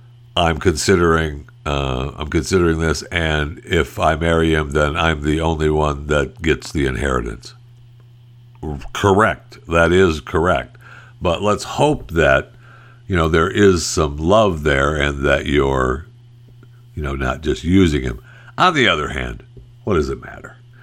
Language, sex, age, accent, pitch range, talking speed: English, male, 60-79, American, 75-120 Hz, 150 wpm